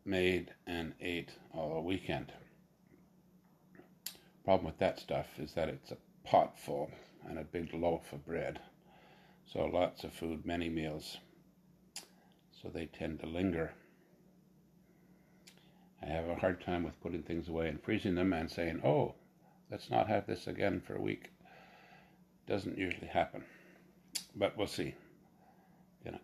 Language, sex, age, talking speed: English, male, 60-79, 140 wpm